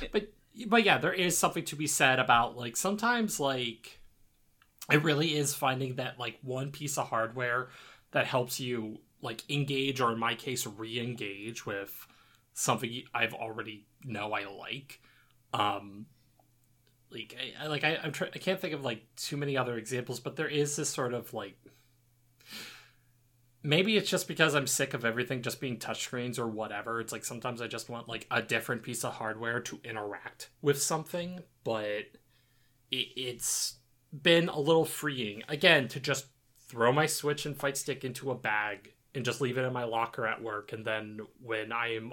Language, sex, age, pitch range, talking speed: English, male, 20-39, 115-150 Hz, 180 wpm